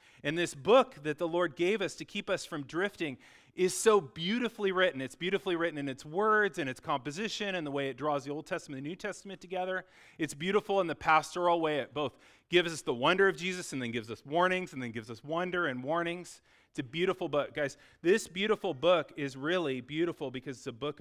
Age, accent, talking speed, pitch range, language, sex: 30-49, American, 230 wpm, 140-180 Hz, English, male